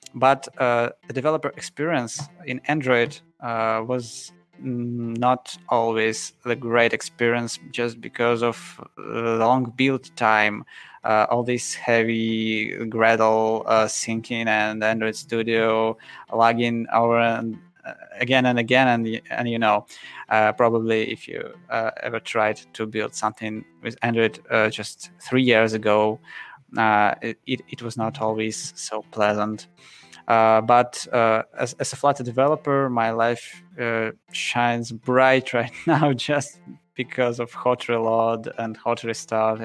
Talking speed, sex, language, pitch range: 135 wpm, male, Russian, 110-125 Hz